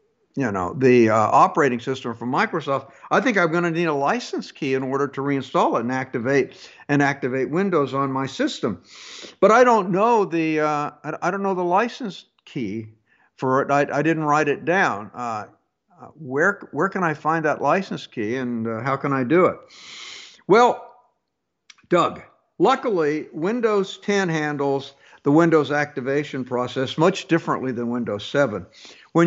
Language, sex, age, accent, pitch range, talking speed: English, male, 60-79, American, 135-180 Hz, 170 wpm